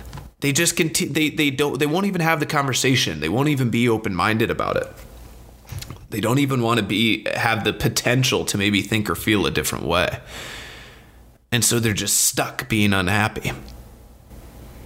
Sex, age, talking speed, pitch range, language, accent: male, 30-49, 175 wpm, 105-135 Hz, English, American